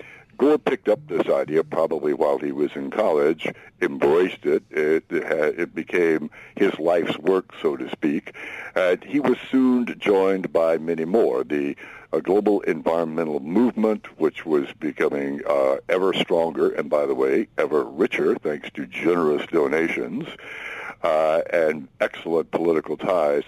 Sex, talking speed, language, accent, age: male, 140 wpm, English, American, 60-79